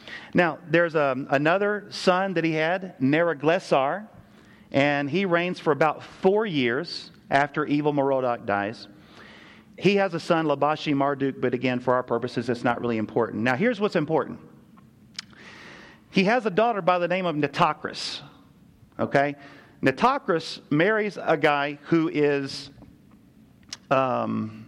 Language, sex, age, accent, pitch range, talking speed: English, male, 40-59, American, 130-170 Hz, 135 wpm